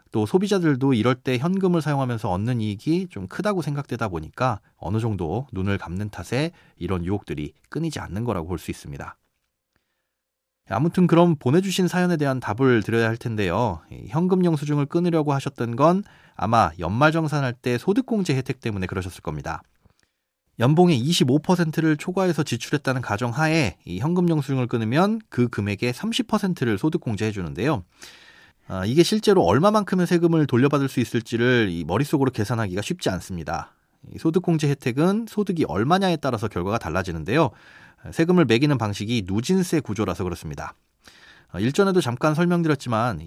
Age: 30-49